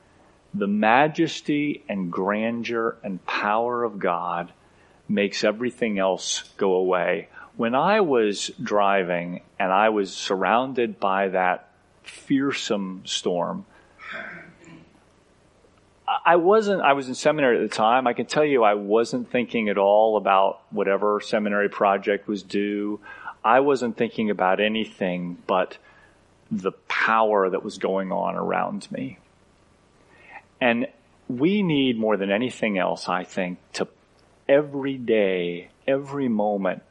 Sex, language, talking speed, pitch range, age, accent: male, English, 125 wpm, 95-125 Hz, 40-59, American